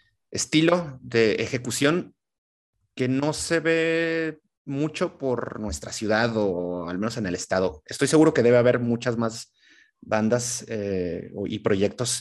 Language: Spanish